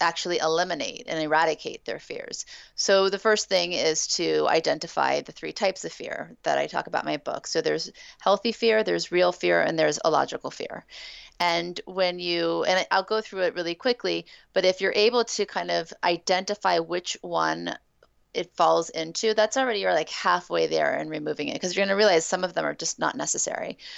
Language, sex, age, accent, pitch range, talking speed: English, female, 30-49, American, 165-215 Hz, 200 wpm